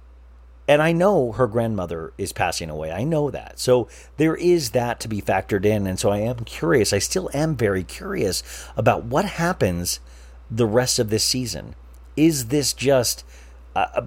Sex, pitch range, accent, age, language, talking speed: male, 90-130 Hz, American, 40-59, English, 175 wpm